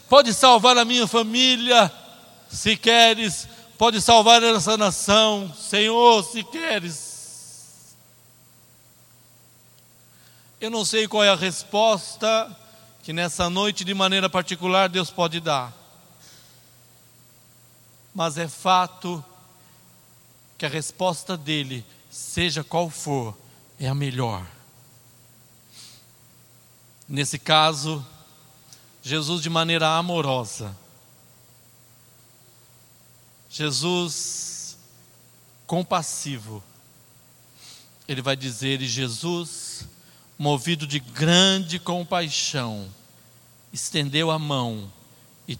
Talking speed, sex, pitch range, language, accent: 85 wpm, male, 120-185 Hz, Portuguese, Brazilian